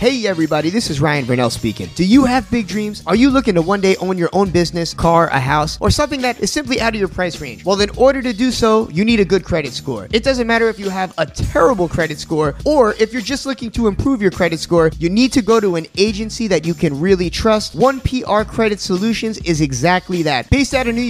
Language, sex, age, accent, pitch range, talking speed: English, male, 20-39, American, 175-235 Hz, 255 wpm